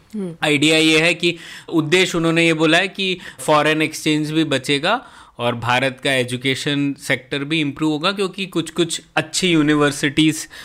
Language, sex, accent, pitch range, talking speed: Hindi, male, native, 140-165 Hz, 150 wpm